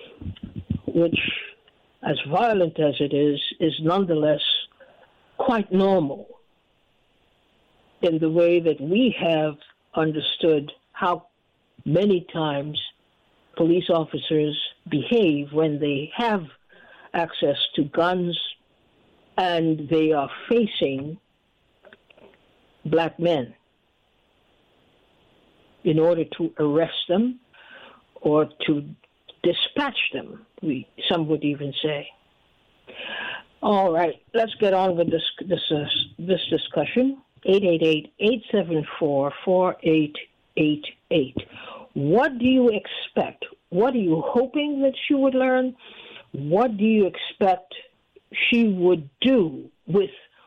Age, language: 60-79, English